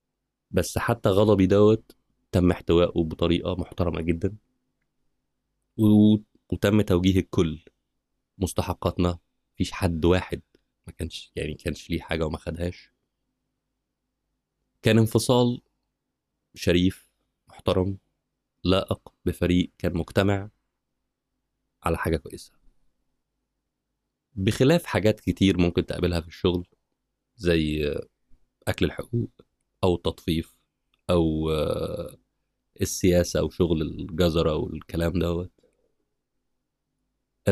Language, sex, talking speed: Arabic, male, 90 wpm